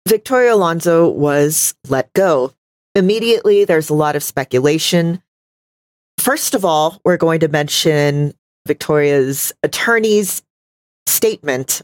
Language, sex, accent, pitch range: English, female, American, 140-180 Hz